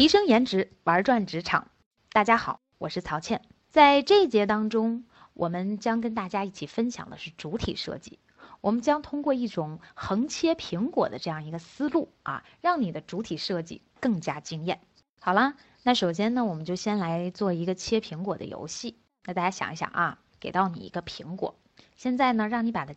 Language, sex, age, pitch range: Chinese, female, 20-39, 180-255 Hz